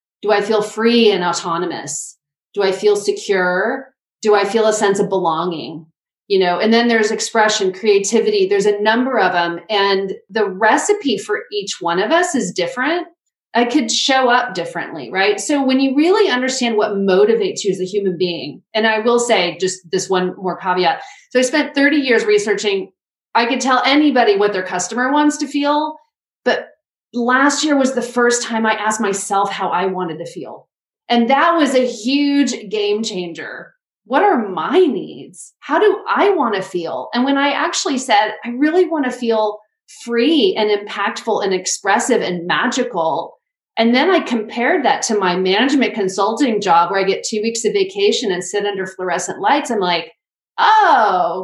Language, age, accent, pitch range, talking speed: English, 30-49, American, 190-280 Hz, 180 wpm